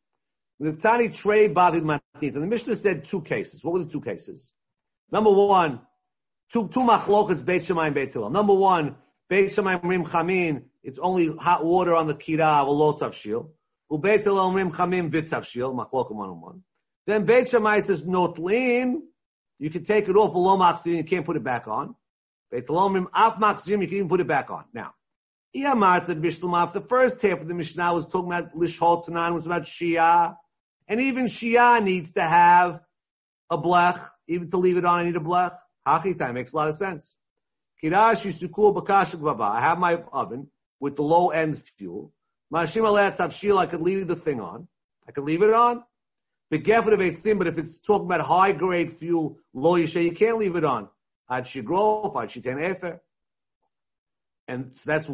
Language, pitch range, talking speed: English, 160-200 Hz, 165 wpm